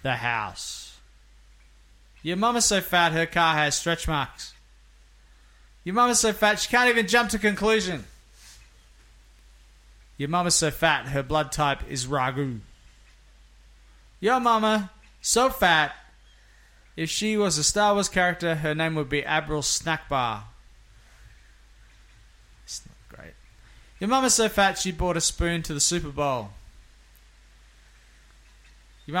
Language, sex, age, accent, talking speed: English, male, 20-39, Australian, 130 wpm